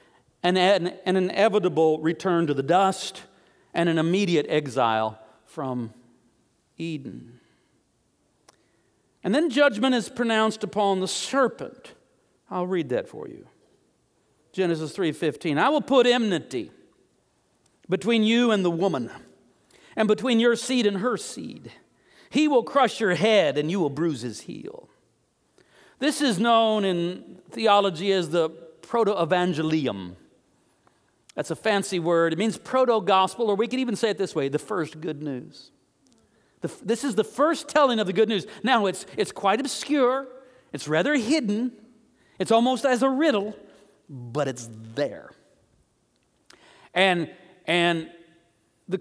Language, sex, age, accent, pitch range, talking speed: English, male, 50-69, American, 165-230 Hz, 135 wpm